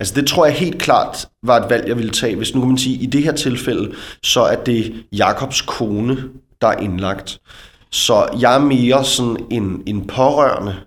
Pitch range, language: 100-130 Hz, Danish